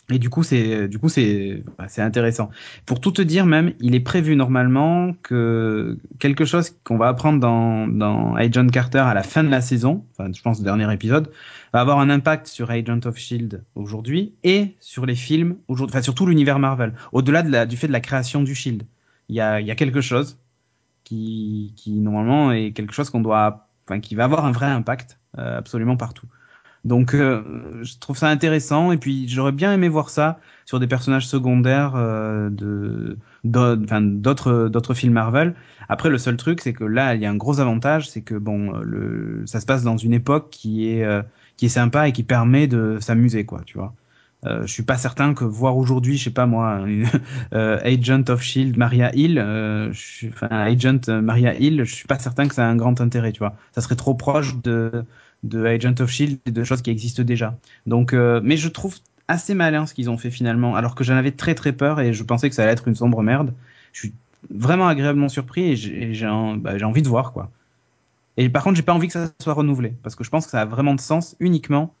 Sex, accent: male, French